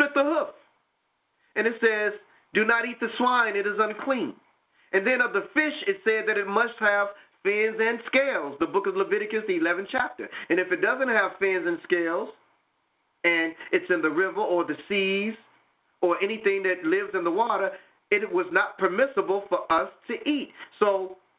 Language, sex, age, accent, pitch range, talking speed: English, male, 40-59, American, 195-250 Hz, 185 wpm